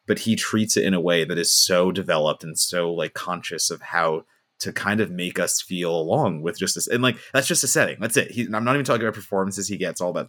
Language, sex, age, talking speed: English, male, 30-49, 260 wpm